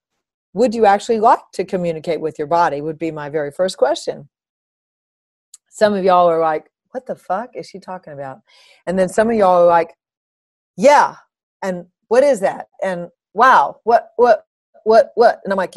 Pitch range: 170-225 Hz